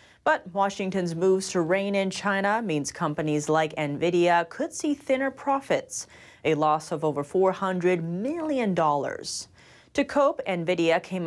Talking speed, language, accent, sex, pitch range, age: 135 wpm, English, American, female, 165-240 Hz, 30-49